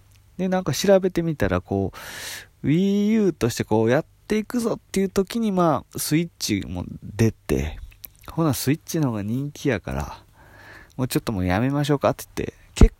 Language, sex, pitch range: Japanese, male, 95-145 Hz